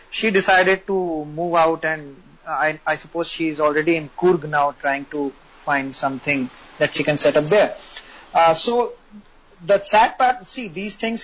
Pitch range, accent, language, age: 155-200 Hz, Indian, English, 30-49